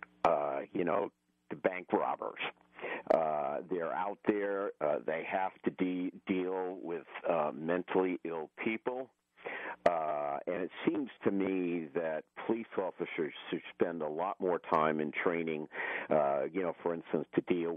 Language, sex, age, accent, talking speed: English, male, 50-69, American, 150 wpm